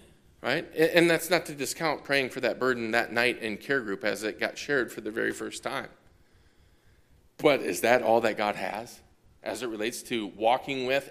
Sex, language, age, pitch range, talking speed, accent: male, English, 40-59, 120-190 Hz, 200 wpm, American